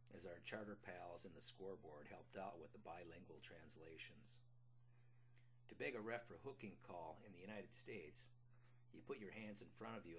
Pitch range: 105-120 Hz